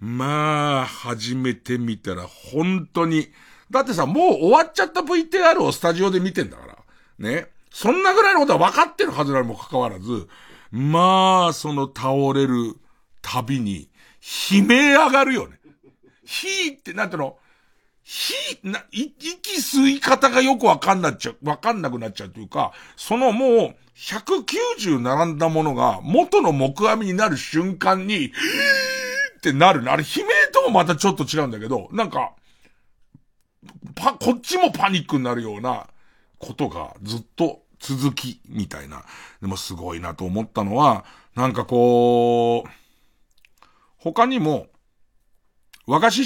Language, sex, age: Japanese, male, 50-69